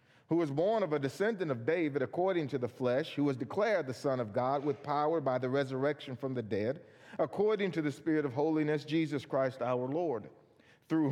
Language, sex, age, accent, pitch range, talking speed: English, male, 50-69, American, 125-155 Hz, 205 wpm